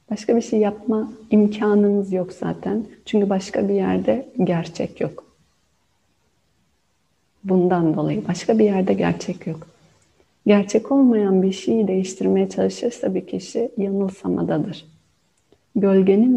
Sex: female